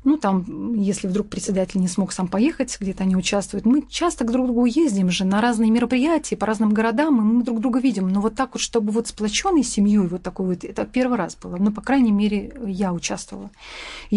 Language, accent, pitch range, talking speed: Russian, native, 205-250 Hz, 220 wpm